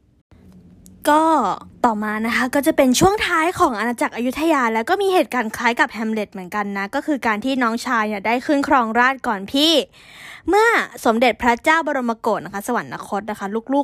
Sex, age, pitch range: female, 20-39, 210-280 Hz